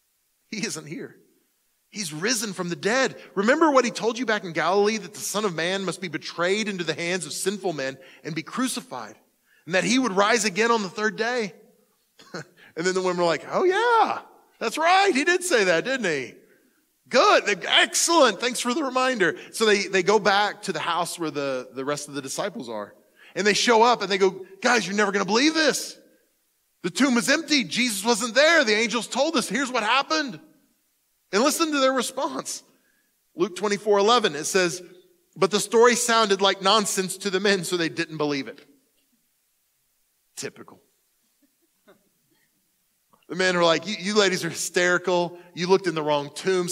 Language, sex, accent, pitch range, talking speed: English, male, American, 175-250 Hz, 190 wpm